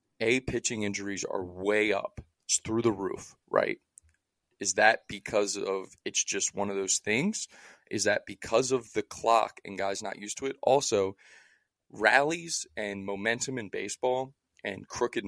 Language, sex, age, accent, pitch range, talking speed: English, male, 20-39, American, 100-120 Hz, 160 wpm